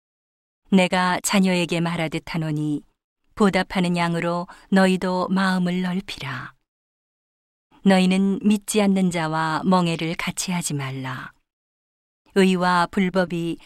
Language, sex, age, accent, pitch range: Korean, female, 40-59, native, 165-195 Hz